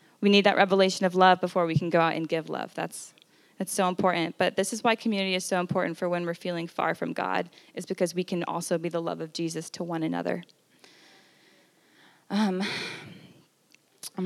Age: 10-29